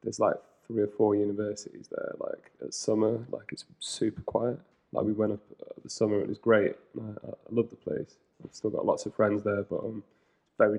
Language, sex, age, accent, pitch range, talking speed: English, male, 20-39, British, 100-115 Hz, 215 wpm